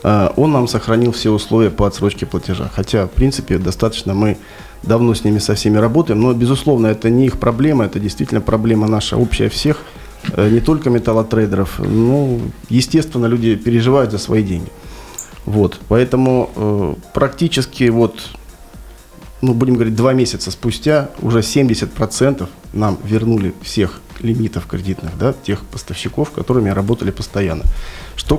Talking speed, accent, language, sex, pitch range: 135 wpm, native, Russian, male, 105-125 Hz